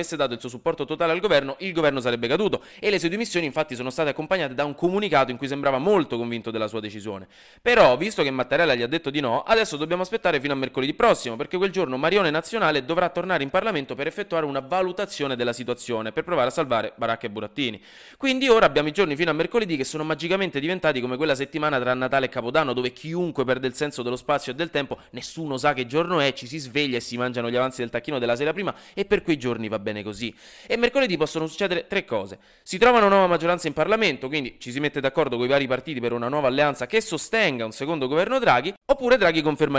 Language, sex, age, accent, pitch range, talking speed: Italian, male, 20-39, native, 125-170 Hz, 240 wpm